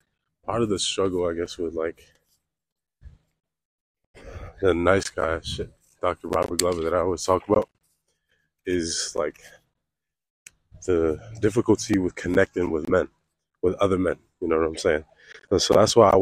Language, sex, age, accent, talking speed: English, male, 20-39, American, 150 wpm